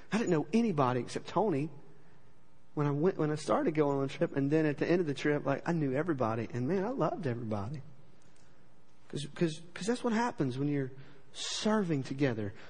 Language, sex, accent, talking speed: English, male, American, 195 wpm